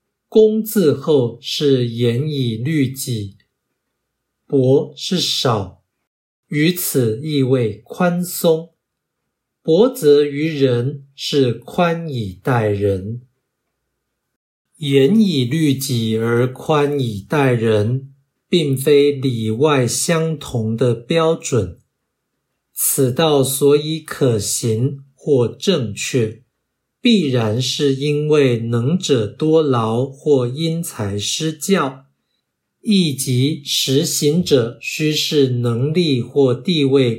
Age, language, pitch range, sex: 60-79, Chinese, 120-155 Hz, male